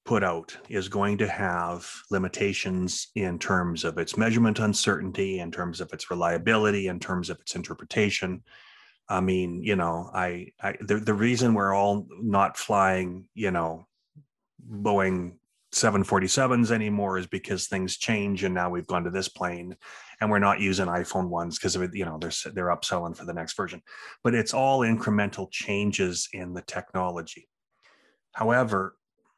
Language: English